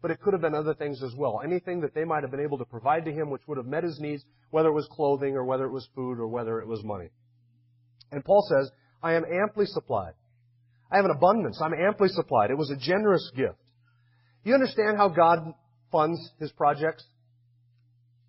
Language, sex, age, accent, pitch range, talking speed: English, male, 40-59, American, 125-195 Hz, 215 wpm